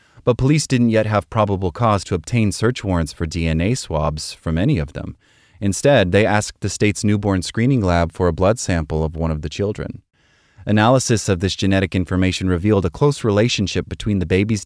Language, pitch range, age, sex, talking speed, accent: English, 85-110 Hz, 30-49, male, 190 wpm, American